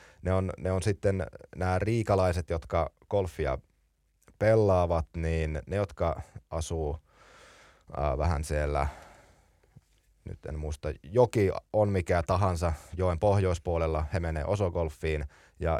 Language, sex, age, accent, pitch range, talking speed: Finnish, male, 30-49, native, 75-95 Hz, 115 wpm